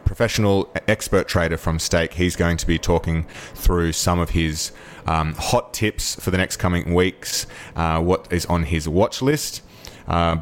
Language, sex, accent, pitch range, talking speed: English, male, Australian, 80-90 Hz, 175 wpm